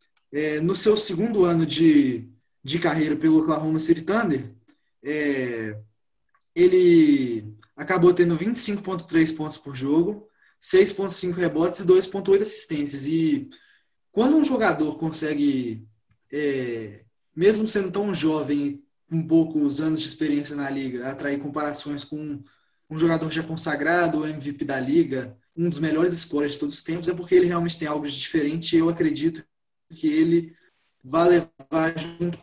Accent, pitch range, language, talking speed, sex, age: Brazilian, 145-175 Hz, Portuguese, 140 wpm, male, 20-39